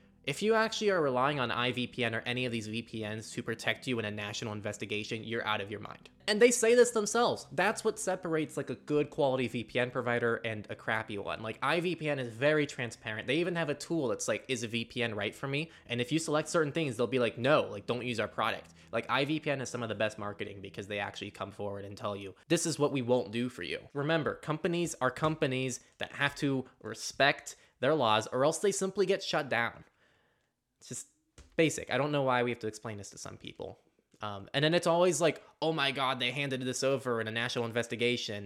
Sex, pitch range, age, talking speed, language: male, 115-150 Hz, 20-39, 230 wpm, English